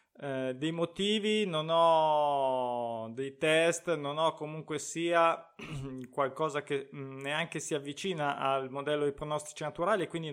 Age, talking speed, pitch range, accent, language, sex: 20-39, 130 wpm, 150-190 Hz, native, Italian, male